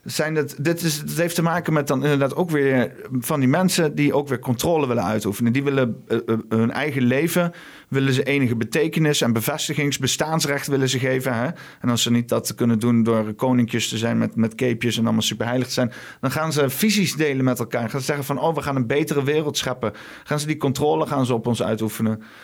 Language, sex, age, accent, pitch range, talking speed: Dutch, male, 40-59, Dutch, 120-155 Hz, 220 wpm